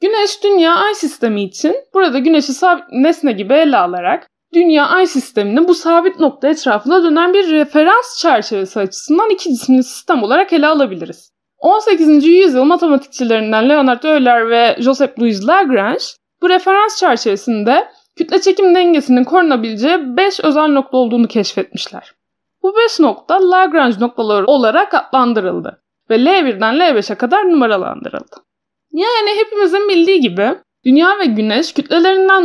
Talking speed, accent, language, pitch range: 130 wpm, native, Turkish, 250-370 Hz